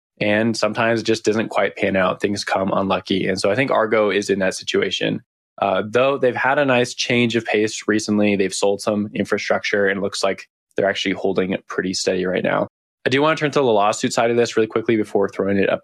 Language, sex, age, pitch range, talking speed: English, male, 20-39, 95-115 Hz, 240 wpm